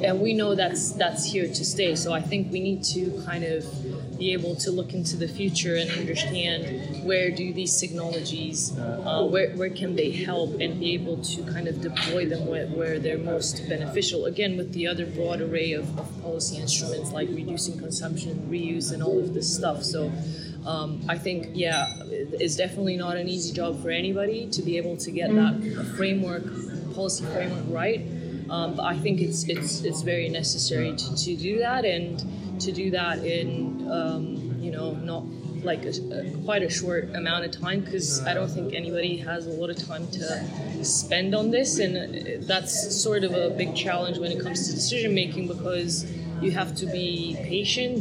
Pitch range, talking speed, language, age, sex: 165-185 Hz, 190 wpm, English, 20-39, female